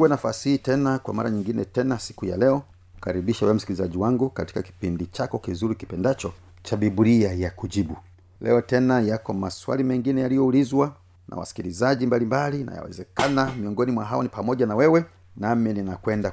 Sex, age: male, 40-59